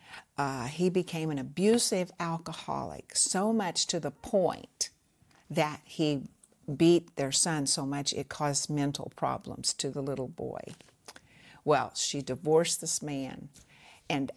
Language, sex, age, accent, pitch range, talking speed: English, female, 60-79, American, 145-175 Hz, 130 wpm